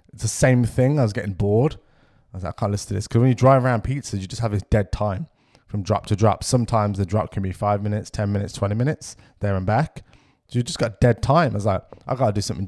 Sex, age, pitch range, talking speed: male, 20-39, 100-125 Hz, 285 wpm